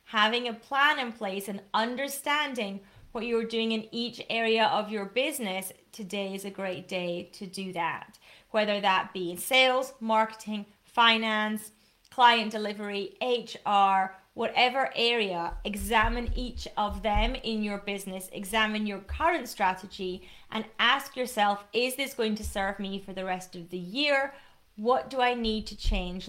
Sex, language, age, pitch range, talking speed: female, English, 30-49, 195-240 Hz, 155 wpm